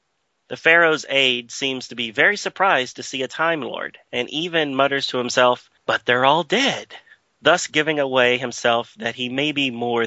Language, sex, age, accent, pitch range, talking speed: English, male, 30-49, American, 115-140 Hz, 185 wpm